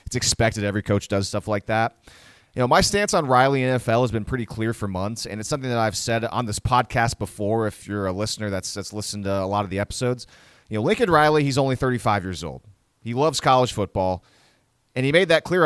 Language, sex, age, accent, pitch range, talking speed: English, male, 30-49, American, 105-135 Hz, 240 wpm